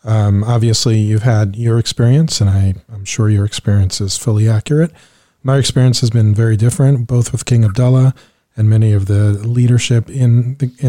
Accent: American